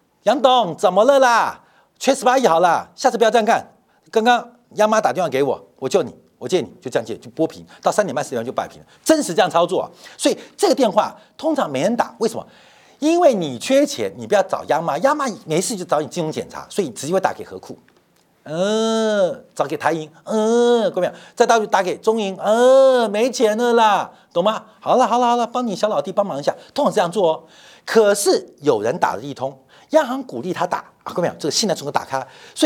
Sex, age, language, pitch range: male, 50-69, Chinese, 200-285 Hz